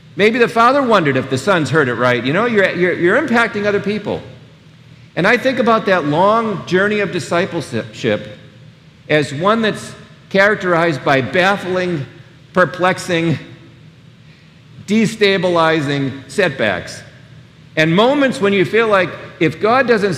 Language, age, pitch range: English, 50-69, 140-195 Hz